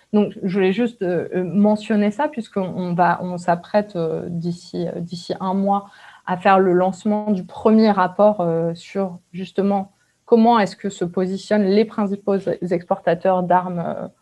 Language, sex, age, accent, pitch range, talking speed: French, female, 20-39, French, 175-210 Hz, 135 wpm